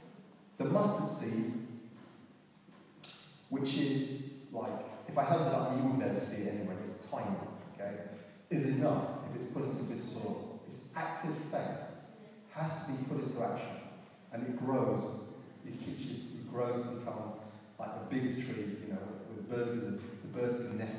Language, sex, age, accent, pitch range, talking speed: English, male, 30-49, British, 130-190 Hz, 175 wpm